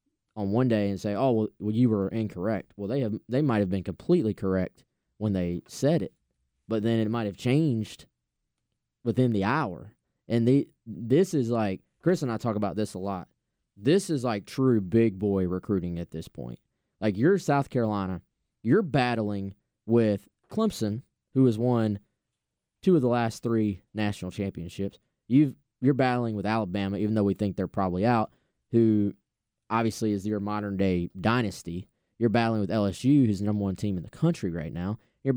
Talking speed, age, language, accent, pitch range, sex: 185 wpm, 20-39, English, American, 100-125 Hz, male